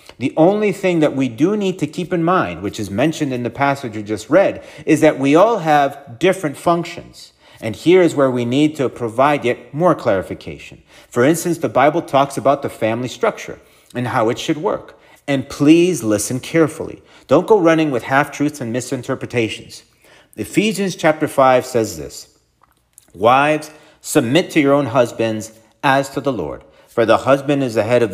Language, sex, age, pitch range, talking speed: English, male, 40-59, 115-160 Hz, 180 wpm